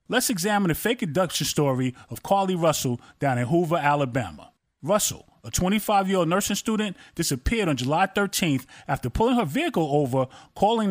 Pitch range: 140-210 Hz